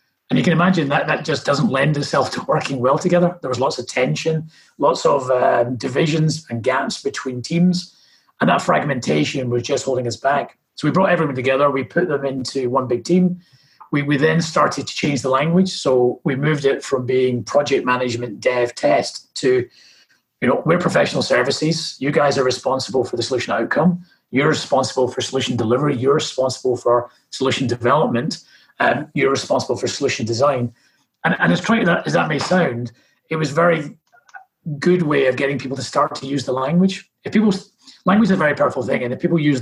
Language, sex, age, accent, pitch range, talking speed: English, male, 30-49, British, 125-170 Hz, 195 wpm